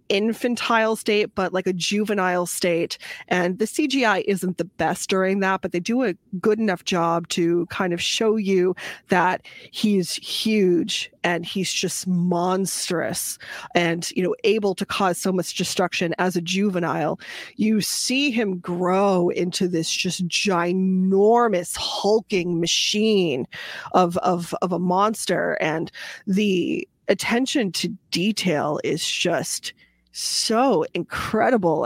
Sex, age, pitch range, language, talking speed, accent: female, 20-39, 175-215 Hz, English, 130 wpm, American